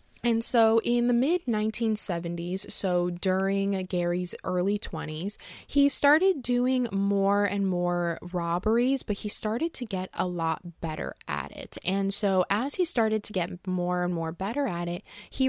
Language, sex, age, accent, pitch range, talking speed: English, female, 20-39, American, 175-225 Hz, 160 wpm